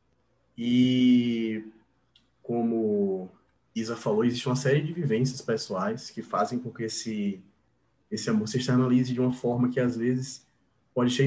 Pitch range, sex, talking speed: 115-190 Hz, male, 145 wpm